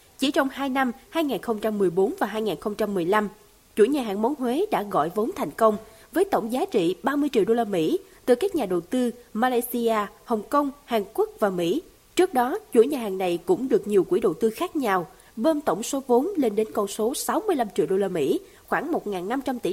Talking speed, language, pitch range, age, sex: 205 wpm, Vietnamese, 210-320 Hz, 20-39, female